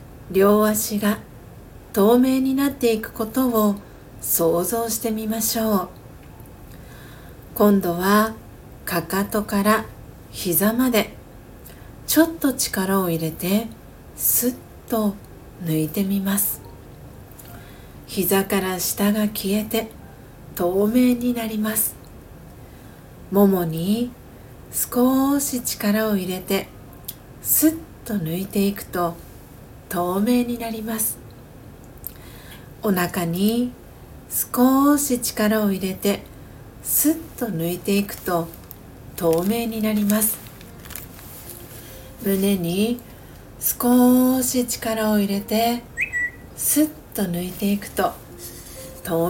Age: 50-69